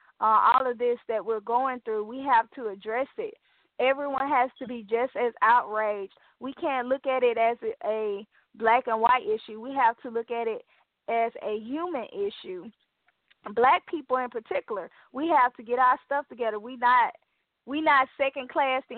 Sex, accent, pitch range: female, American, 220-260 Hz